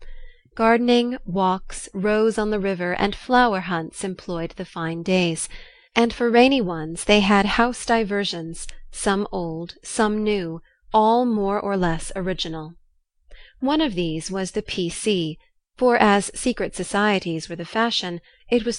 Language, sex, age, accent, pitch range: Korean, female, 30-49, American, 170-220 Hz